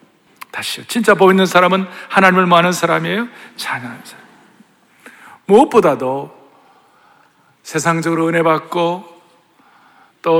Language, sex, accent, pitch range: Korean, male, native, 150-195 Hz